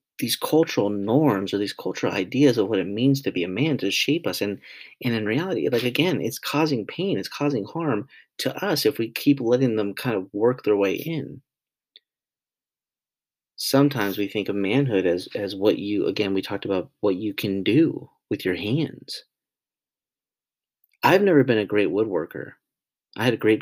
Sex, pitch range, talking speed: male, 100-130 Hz, 185 wpm